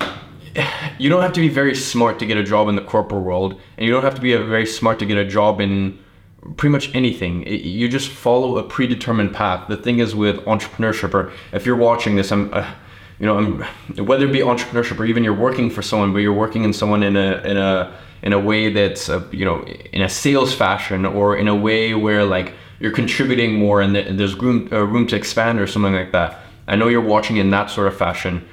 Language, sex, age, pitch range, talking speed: English, male, 20-39, 100-125 Hz, 225 wpm